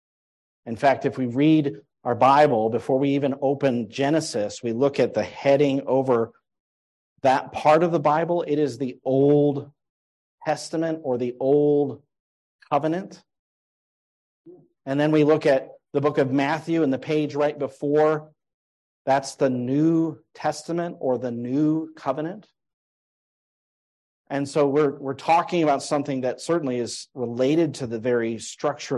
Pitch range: 120-150 Hz